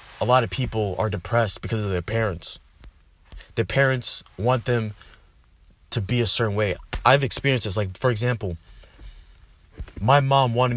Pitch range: 90-120 Hz